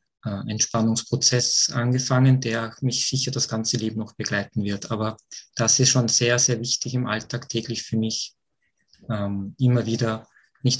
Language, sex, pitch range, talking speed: German, male, 115-135 Hz, 145 wpm